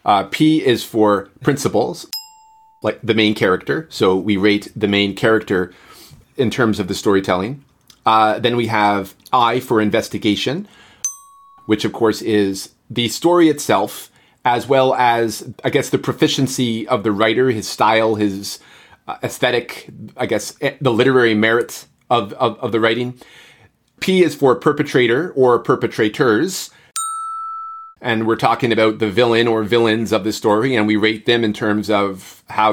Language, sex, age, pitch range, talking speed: English, male, 30-49, 110-140 Hz, 155 wpm